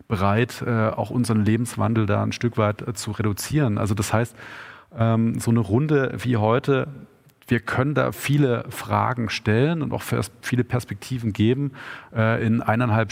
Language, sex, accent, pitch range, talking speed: German, male, German, 110-125 Hz, 140 wpm